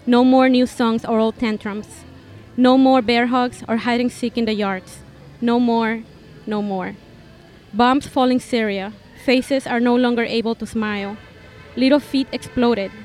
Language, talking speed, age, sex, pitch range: English, 160 wpm, 20-39, female, 225-255 Hz